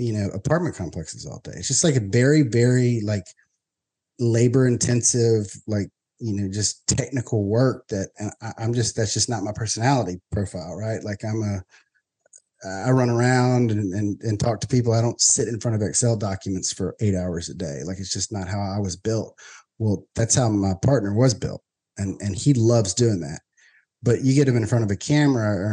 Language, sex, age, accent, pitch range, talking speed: English, male, 30-49, American, 105-125 Hz, 205 wpm